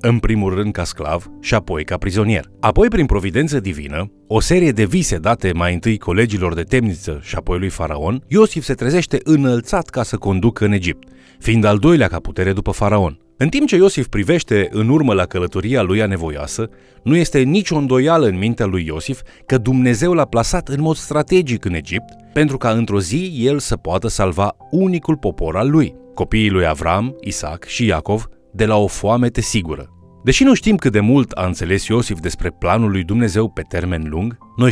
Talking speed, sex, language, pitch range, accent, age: 195 wpm, male, Romanian, 95-135 Hz, native, 30-49